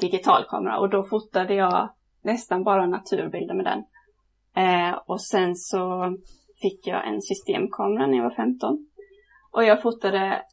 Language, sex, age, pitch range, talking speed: Swedish, female, 20-39, 185-235 Hz, 140 wpm